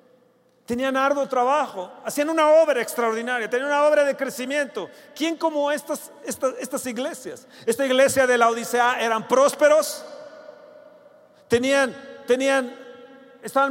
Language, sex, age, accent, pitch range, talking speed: Spanish, male, 40-59, Mexican, 225-285 Hz, 125 wpm